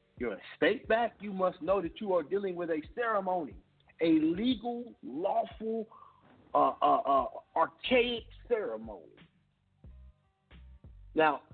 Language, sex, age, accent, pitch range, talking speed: English, male, 50-69, American, 125-195 Hz, 120 wpm